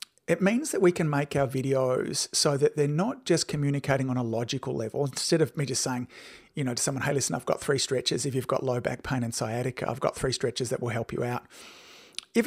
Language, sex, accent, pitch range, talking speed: English, male, Australian, 125-145 Hz, 245 wpm